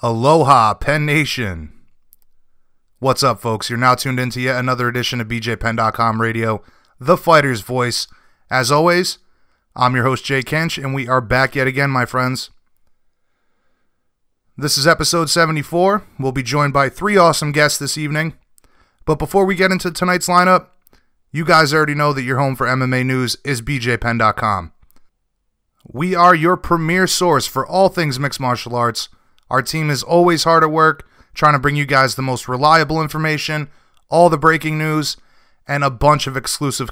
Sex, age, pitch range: male, 30-49, 130-160 Hz